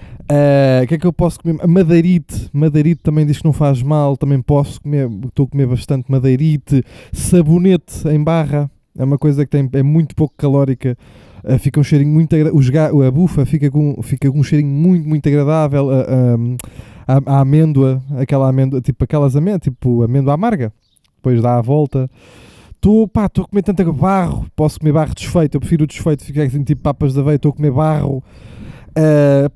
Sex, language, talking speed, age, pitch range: male, Portuguese, 195 wpm, 20-39, 135-165 Hz